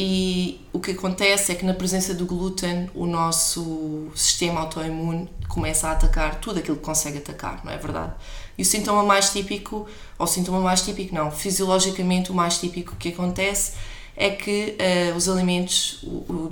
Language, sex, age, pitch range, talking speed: Portuguese, female, 20-39, 160-185 Hz, 170 wpm